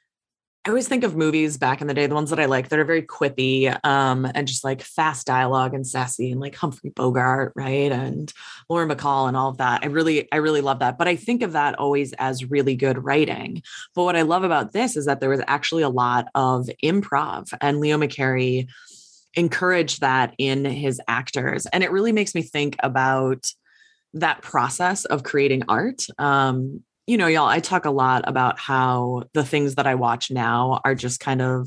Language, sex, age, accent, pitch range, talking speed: English, female, 20-39, American, 130-155 Hz, 205 wpm